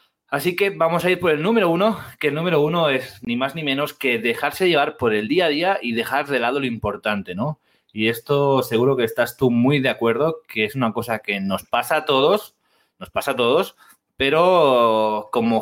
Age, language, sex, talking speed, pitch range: 30-49, Spanish, male, 220 wpm, 120-155 Hz